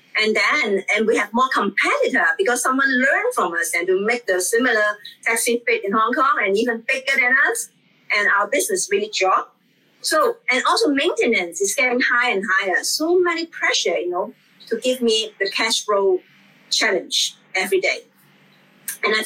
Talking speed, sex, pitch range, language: 180 wpm, female, 195-270 Hz, English